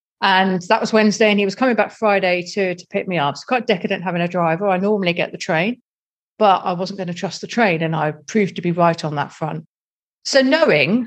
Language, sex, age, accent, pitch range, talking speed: English, female, 40-59, British, 175-220 Hz, 245 wpm